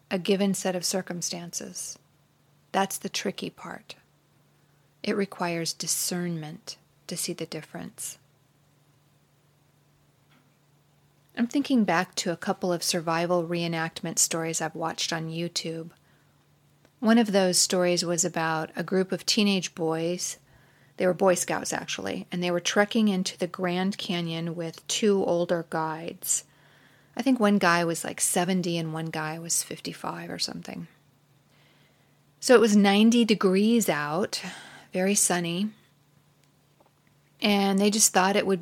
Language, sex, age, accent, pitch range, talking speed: English, female, 40-59, American, 160-195 Hz, 135 wpm